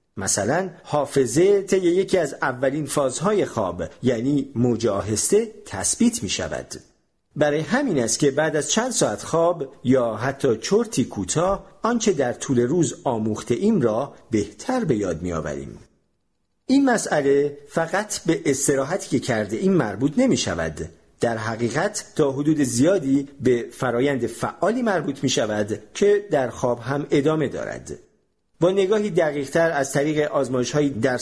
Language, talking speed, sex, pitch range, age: Persian, 140 wpm, male, 120-185 Hz, 50-69